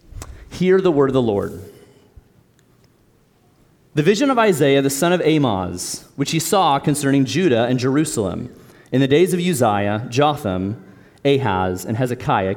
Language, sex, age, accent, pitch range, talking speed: English, male, 30-49, American, 125-185 Hz, 145 wpm